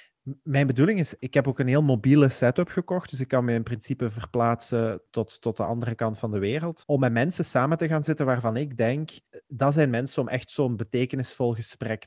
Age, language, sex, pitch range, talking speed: 30-49, Dutch, male, 110-130 Hz, 220 wpm